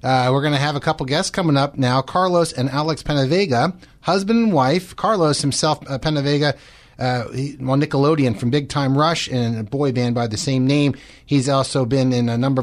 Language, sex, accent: English, male, American